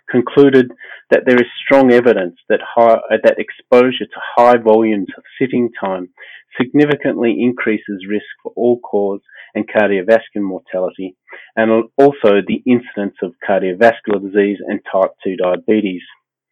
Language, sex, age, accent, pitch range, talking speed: English, male, 30-49, Australian, 95-120 Hz, 130 wpm